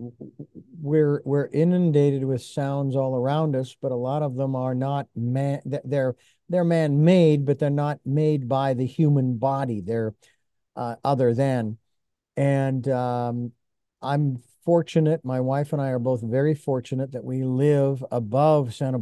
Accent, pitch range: American, 130-155 Hz